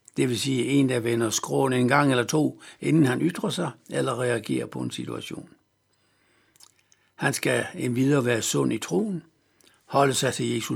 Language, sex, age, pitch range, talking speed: Danish, male, 60-79, 120-170 Hz, 175 wpm